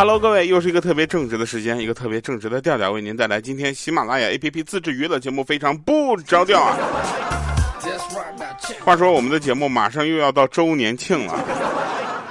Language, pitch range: Chinese, 105-150 Hz